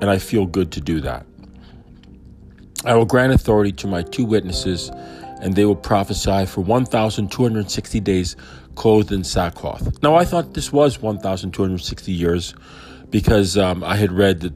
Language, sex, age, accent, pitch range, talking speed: English, male, 40-59, American, 85-100 Hz, 155 wpm